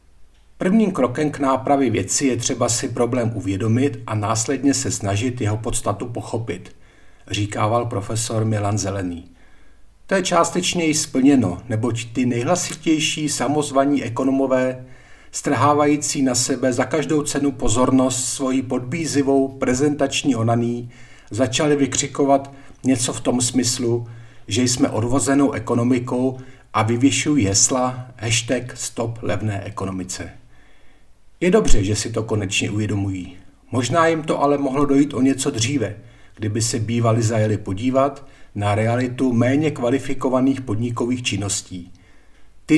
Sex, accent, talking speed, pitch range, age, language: male, native, 120 wpm, 105-135 Hz, 50-69, Czech